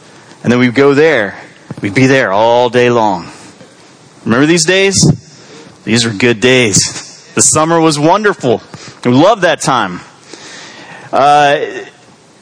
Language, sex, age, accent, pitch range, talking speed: English, male, 30-49, American, 130-190 Hz, 130 wpm